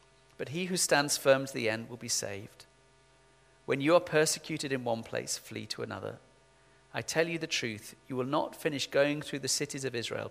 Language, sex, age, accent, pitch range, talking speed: English, male, 40-59, British, 125-145 Hz, 210 wpm